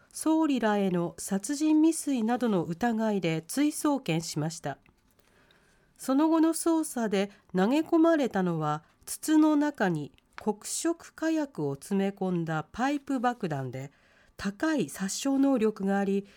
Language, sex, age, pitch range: Japanese, female, 40-59, 185-270 Hz